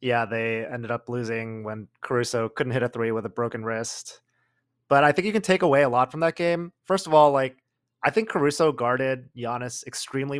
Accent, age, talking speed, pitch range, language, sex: American, 20-39, 215 wpm, 115-135 Hz, English, male